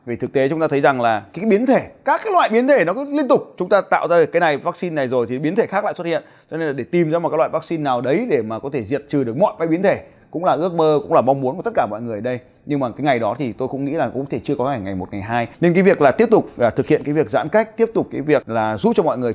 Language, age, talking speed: Vietnamese, 20-39, 355 wpm